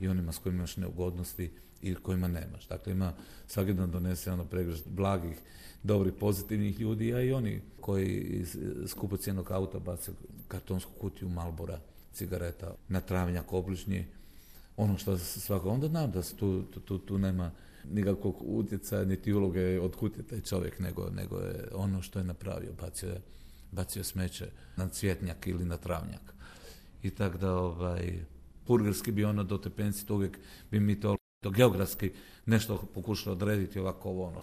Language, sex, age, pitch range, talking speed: Croatian, male, 40-59, 90-105 Hz, 160 wpm